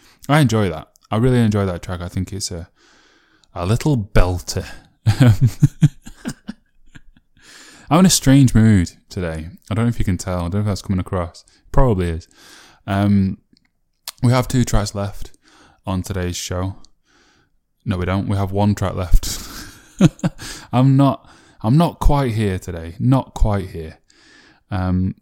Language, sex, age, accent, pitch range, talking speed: English, male, 10-29, British, 95-115 Hz, 155 wpm